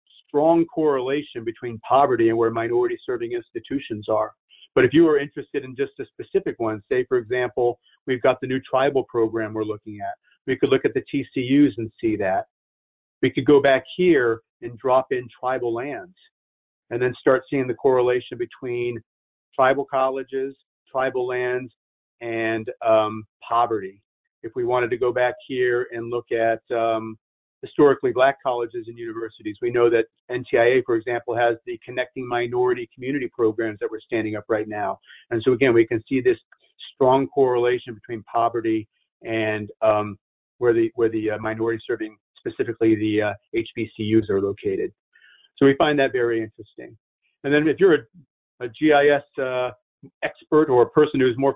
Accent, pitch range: American, 115-170 Hz